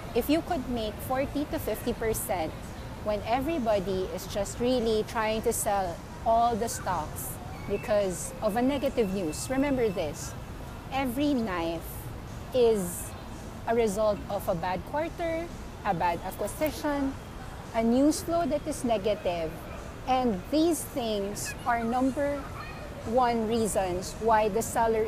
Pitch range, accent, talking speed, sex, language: 190-255 Hz, Filipino, 130 wpm, female, English